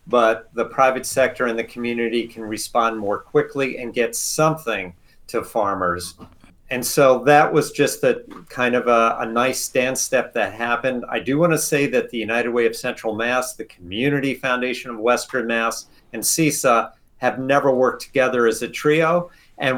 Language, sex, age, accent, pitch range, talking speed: English, male, 50-69, American, 115-140 Hz, 180 wpm